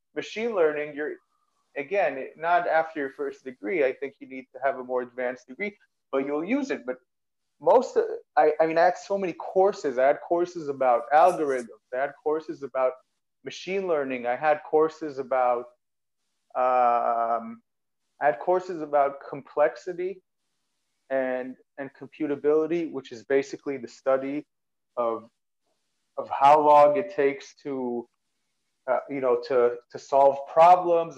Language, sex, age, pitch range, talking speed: English, male, 30-49, 130-160 Hz, 150 wpm